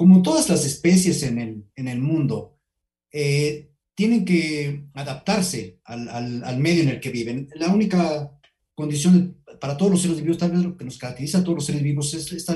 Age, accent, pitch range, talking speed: 40-59, Mexican, 140-185 Hz, 200 wpm